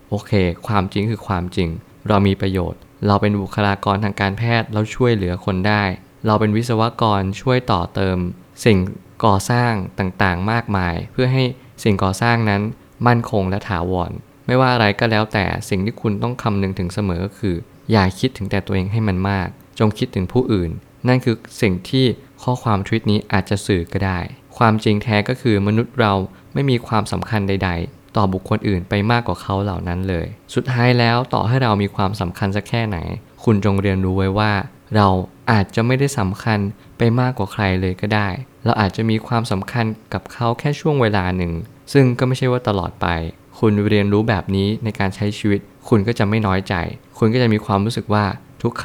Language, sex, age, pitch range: Thai, male, 20-39, 95-115 Hz